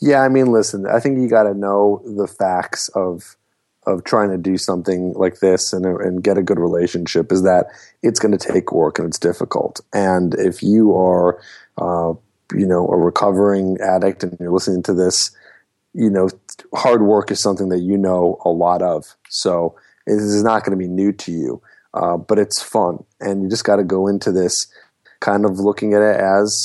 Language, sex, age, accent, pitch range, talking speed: English, male, 30-49, American, 90-100 Hz, 195 wpm